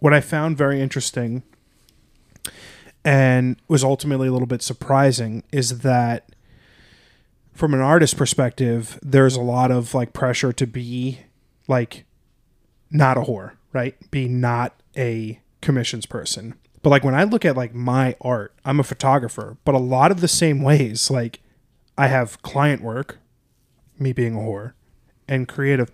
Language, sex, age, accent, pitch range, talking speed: English, male, 20-39, American, 120-140 Hz, 155 wpm